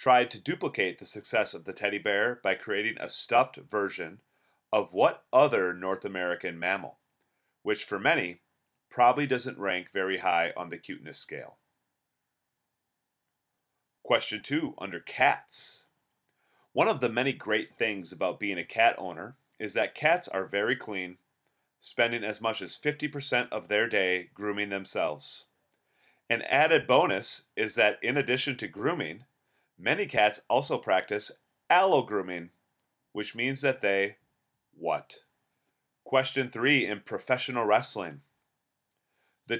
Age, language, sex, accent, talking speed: 30-49, English, male, American, 135 wpm